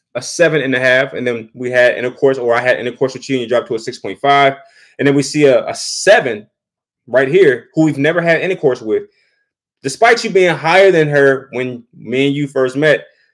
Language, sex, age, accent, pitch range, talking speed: English, male, 20-39, American, 125-210 Hz, 220 wpm